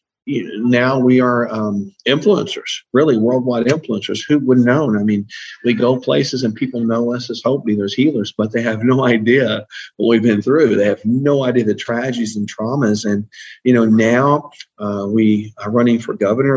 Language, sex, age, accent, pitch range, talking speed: English, male, 50-69, American, 110-125 Hz, 200 wpm